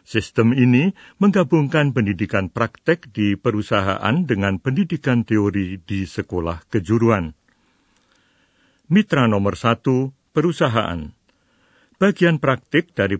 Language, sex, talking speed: Indonesian, male, 90 wpm